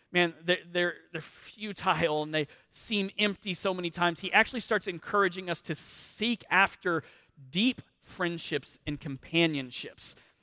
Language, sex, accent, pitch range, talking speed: English, male, American, 145-190 Hz, 130 wpm